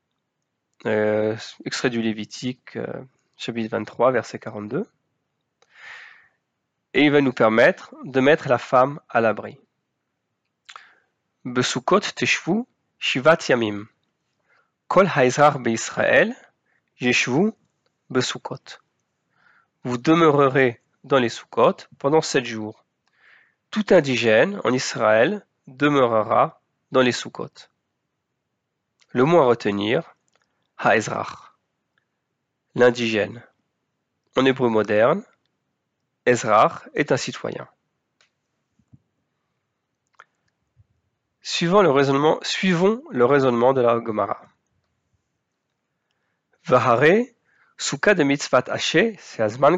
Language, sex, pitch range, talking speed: French, male, 115-155 Hz, 90 wpm